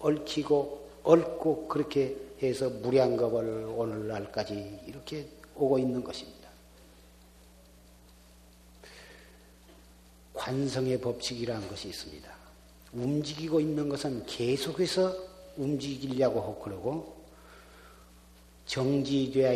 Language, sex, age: Korean, male, 40-59